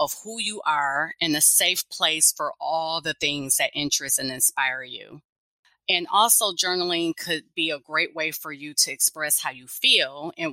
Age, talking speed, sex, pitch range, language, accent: 30-49, 190 wpm, female, 150-195 Hz, English, American